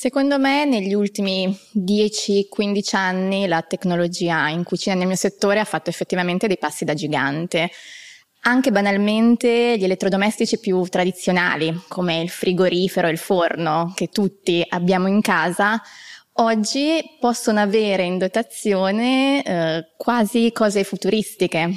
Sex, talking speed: female, 125 wpm